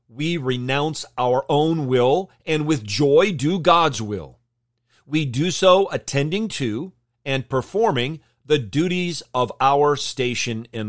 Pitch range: 115-150 Hz